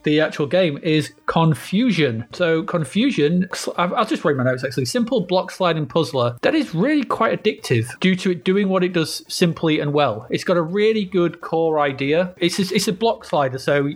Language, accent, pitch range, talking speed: English, British, 140-180 Hz, 195 wpm